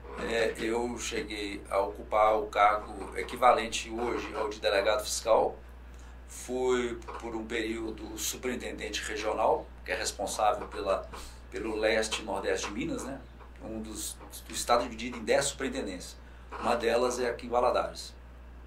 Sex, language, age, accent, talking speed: male, Portuguese, 50-69, Brazilian, 145 wpm